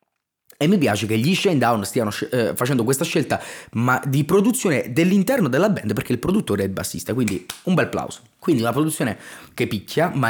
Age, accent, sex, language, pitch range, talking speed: 20-39, native, male, Italian, 110-150 Hz, 190 wpm